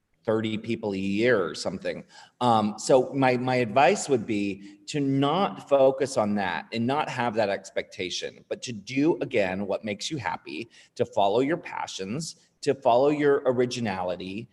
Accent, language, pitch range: American, English, 100-135 Hz